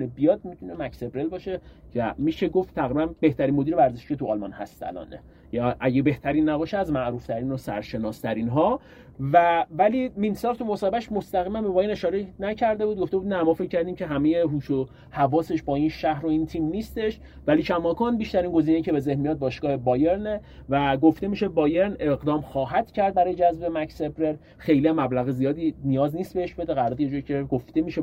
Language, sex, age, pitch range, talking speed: Persian, male, 30-49, 130-180 Hz, 180 wpm